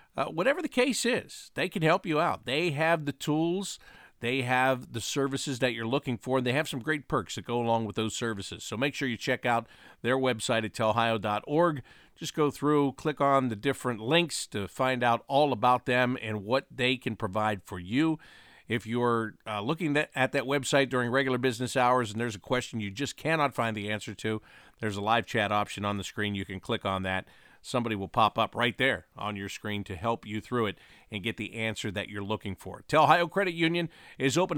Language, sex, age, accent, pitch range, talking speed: English, male, 50-69, American, 110-140 Hz, 220 wpm